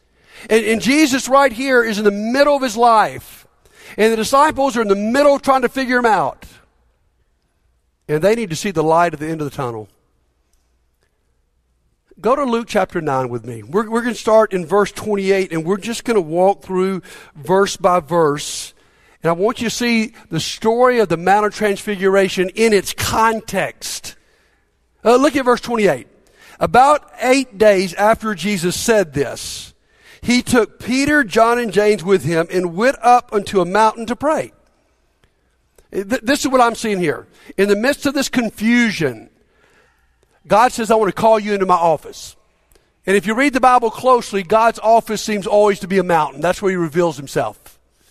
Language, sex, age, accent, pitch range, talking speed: English, male, 50-69, American, 180-240 Hz, 185 wpm